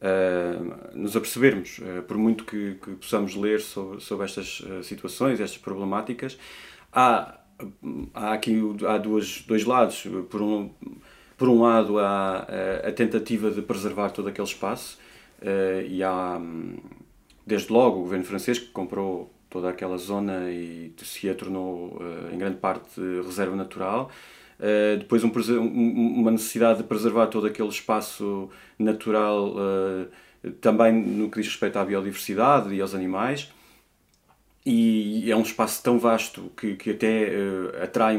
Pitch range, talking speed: 95-115 Hz, 130 wpm